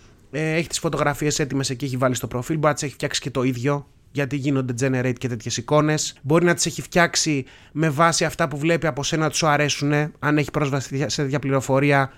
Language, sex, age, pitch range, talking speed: Greek, male, 30-49, 125-160 Hz, 210 wpm